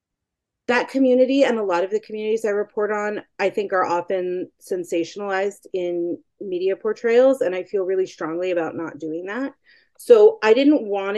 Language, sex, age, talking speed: English, female, 30-49, 170 wpm